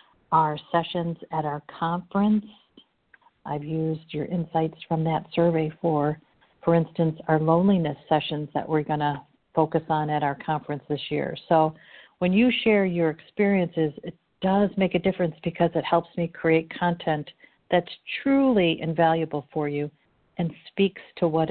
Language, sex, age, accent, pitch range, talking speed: English, female, 50-69, American, 155-180 Hz, 155 wpm